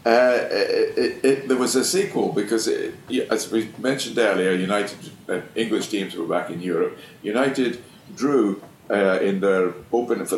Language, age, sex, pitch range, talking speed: English, 50-69, male, 95-120 Hz, 175 wpm